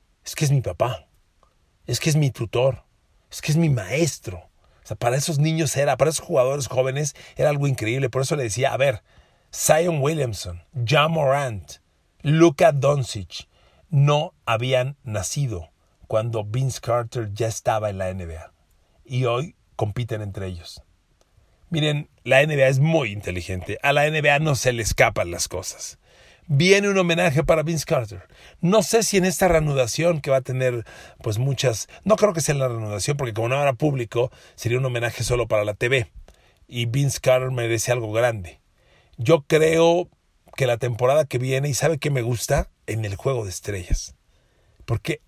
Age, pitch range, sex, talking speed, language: 40-59, 110-150 Hz, male, 175 wpm, Spanish